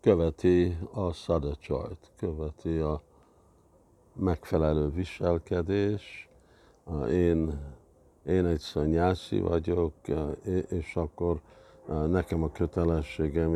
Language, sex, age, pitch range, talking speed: Hungarian, male, 50-69, 80-85 Hz, 75 wpm